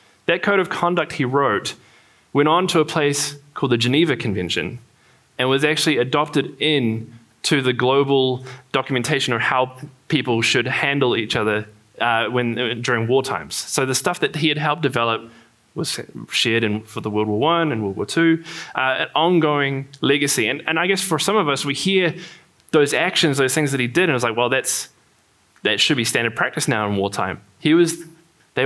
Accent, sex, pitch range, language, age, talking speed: Australian, male, 115-150 Hz, English, 20-39, 195 wpm